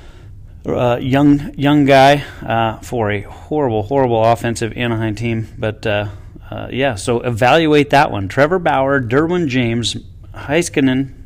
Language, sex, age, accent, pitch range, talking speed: English, male, 30-49, American, 100-120 Hz, 135 wpm